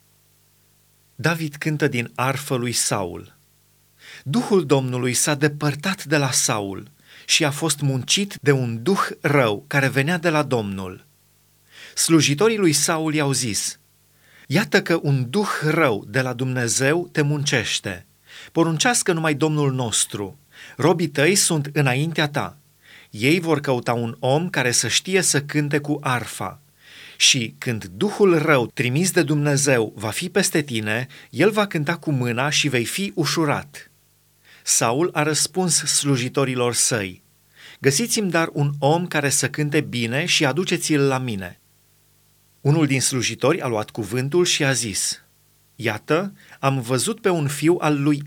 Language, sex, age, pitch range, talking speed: Romanian, male, 30-49, 130-160 Hz, 145 wpm